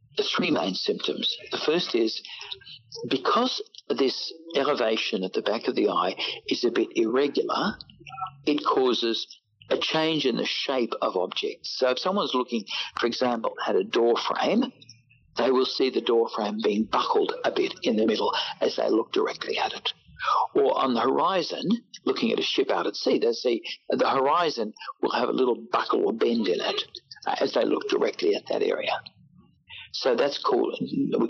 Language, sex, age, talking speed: English, male, 60-79, 180 wpm